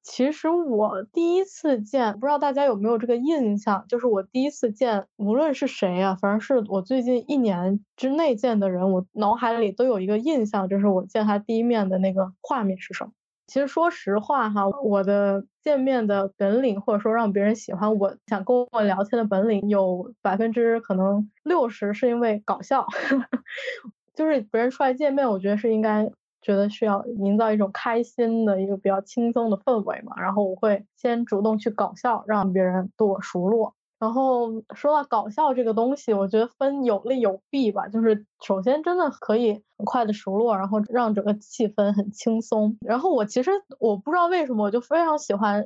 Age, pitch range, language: 20-39, 200-250 Hz, Chinese